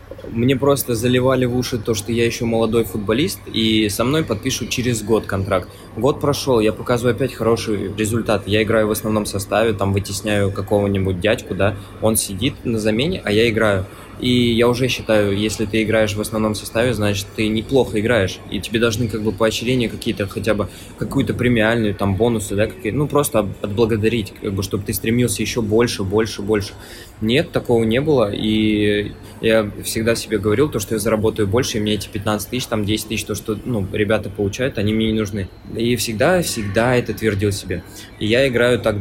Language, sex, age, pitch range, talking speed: Russian, male, 20-39, 105-115 Hz, 190 wpm